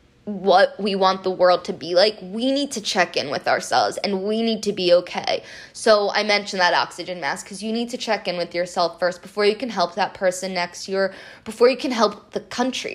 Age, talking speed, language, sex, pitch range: 20-39, 230 wpm, English, female, 180-220 Hz